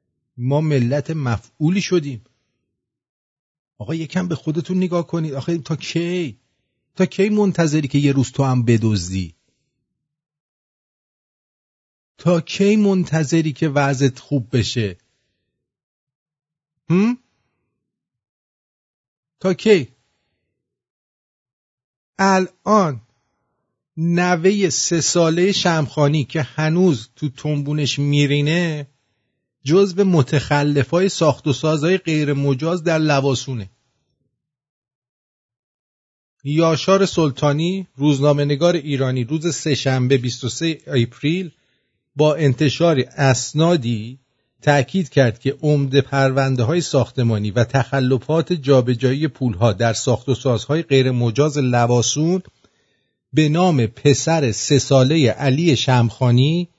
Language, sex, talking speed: English, male, 95 wpm